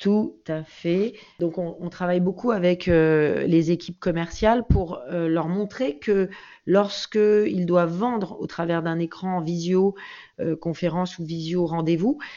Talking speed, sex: 140 wpm, female